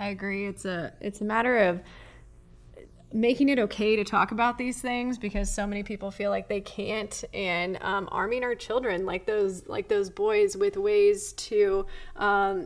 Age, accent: 20-39, American